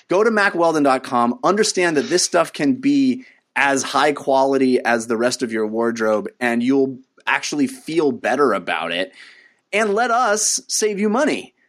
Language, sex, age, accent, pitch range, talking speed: English, male, 30-49, American, 120-185 Hz, 160 wpm